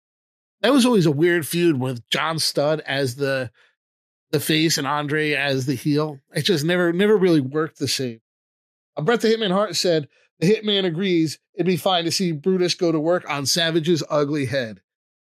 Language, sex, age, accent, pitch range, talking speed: English, male, 30-49, American, 150-185 Hz, 190 wpm